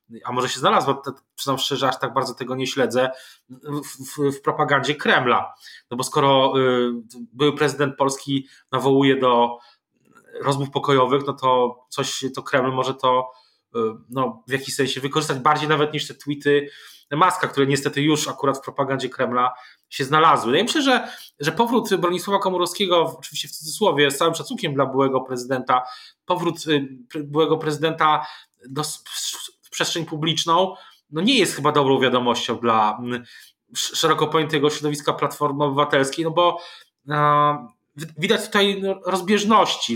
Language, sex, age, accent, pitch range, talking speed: Polish, male, 20-39, native, 135-160 Hz, 150 wpm